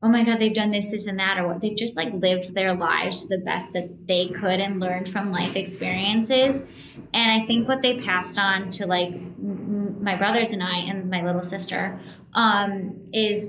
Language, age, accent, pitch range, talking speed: English, 10-29, American, 180-205 Hz, 205 wpm